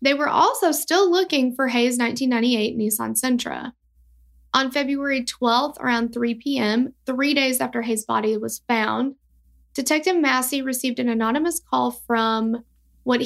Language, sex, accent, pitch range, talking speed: English, female, American, 225-270 Hz, 140 wpm